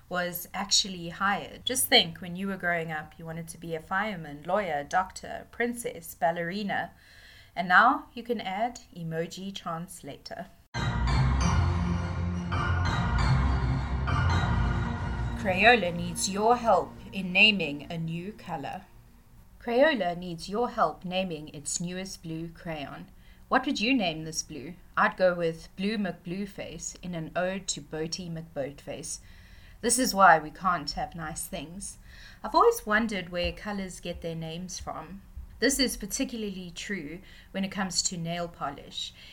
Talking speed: 135 wpm